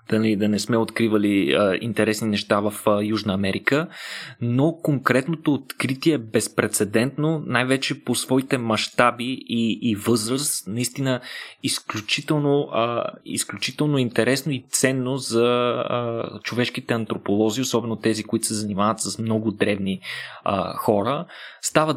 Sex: male